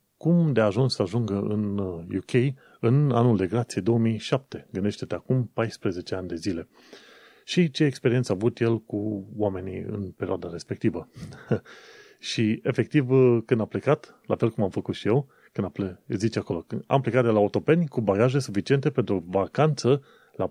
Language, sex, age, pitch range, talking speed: Romanian, male, 30-49, 100-125 Hz, 175 wpm